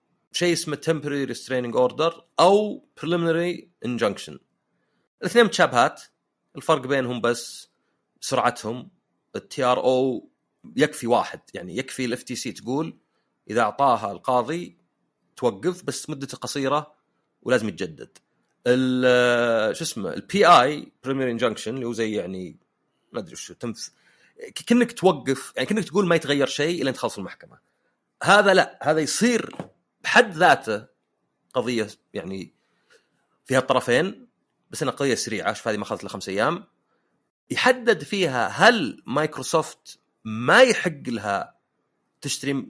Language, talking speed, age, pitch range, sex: Arabic, 120 wpm, 30-49, 125-175 Hz, male